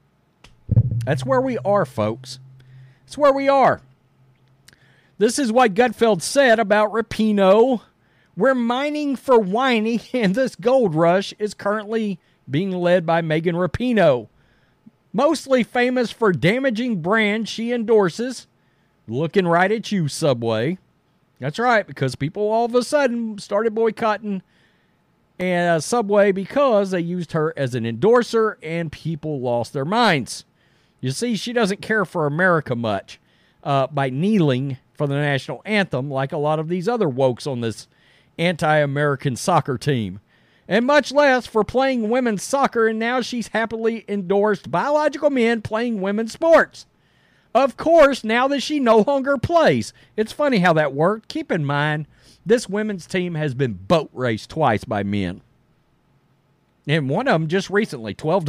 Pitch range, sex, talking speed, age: 145-230 Hz, male, 145 wpm, 40-59